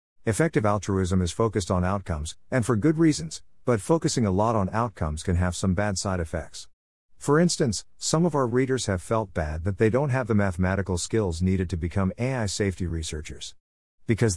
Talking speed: 190 wpm